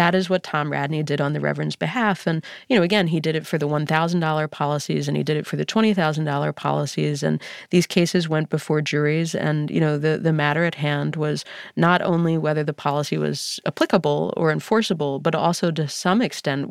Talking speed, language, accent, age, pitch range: 210 wpm, English, American, 30-49, 150-170 Hz